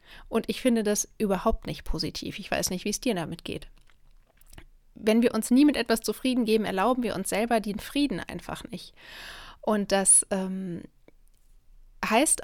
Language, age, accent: German, 30-49, German